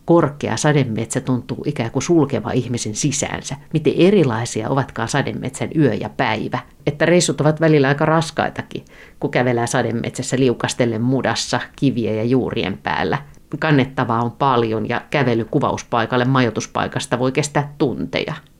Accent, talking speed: native, 130 wpm